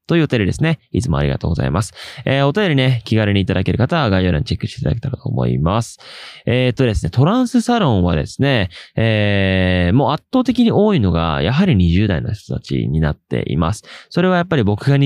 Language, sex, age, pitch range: Japanese, male, 20-39, 95-155 Hz